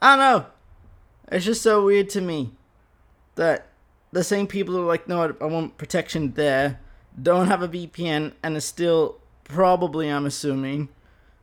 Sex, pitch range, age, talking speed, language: male, 140-200 Hz, 20-39, 170 wpm, English